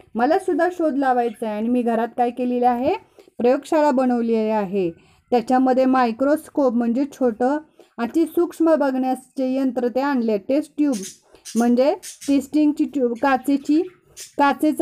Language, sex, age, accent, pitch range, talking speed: Marathi, female, 30-49, native, 245-300 Hz, 120 wpm